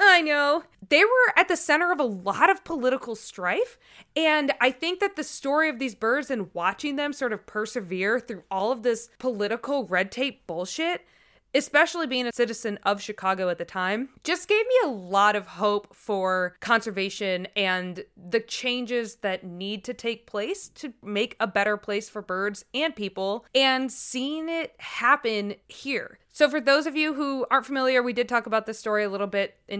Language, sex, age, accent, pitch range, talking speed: English, female, 20-39, American, 195-265 Hz, 190 wpm